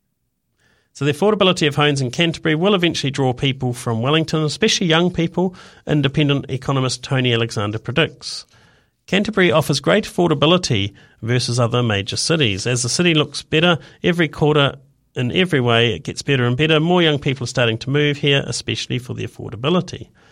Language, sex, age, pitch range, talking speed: English, male, 40-59, 115-155 Hz, 165 wpm